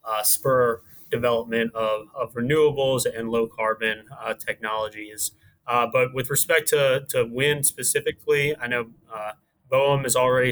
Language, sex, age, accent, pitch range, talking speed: English, male, 20-39, American, 115-135 Hz, 135 wpm